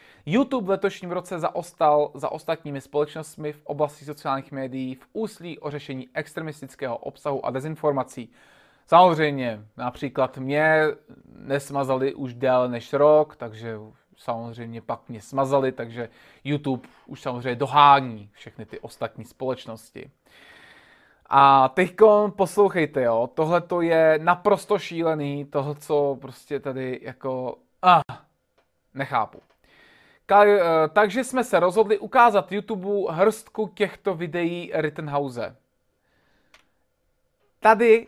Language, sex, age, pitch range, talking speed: Czech, male, 20-39, 135-185 Hz, 105 wpm